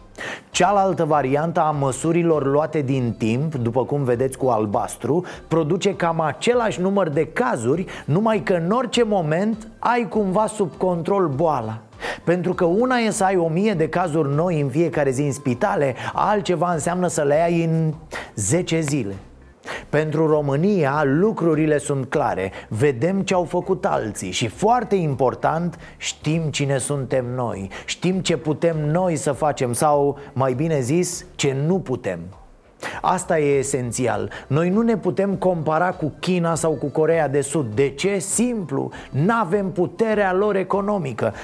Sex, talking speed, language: male, 150 wpm, Romanian